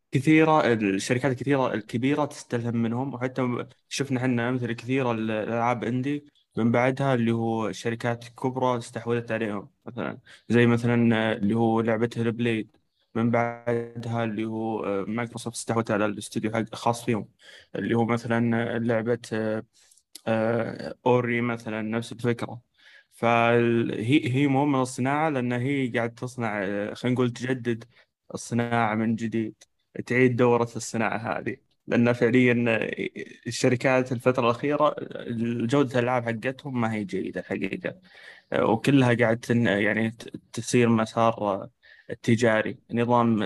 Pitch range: 110-125 Hz